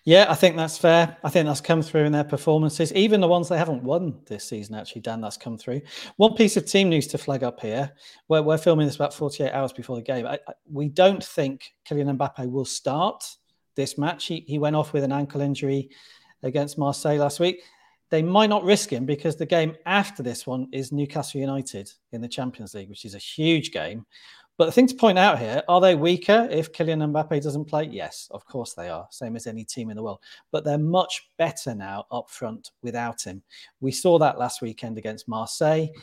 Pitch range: 130-160 Hz